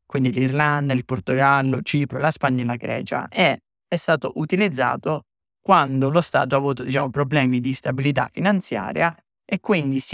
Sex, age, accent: male, 20-39, native